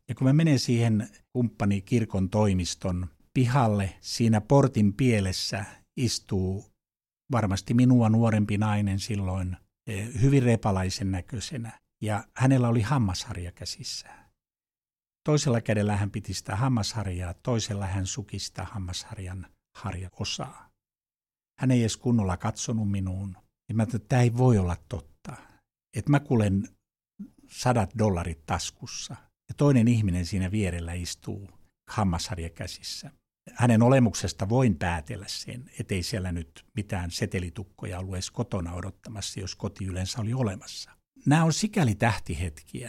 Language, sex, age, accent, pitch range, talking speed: Finnish, male, 60-79, native, 95-120 Hz, 120 wpm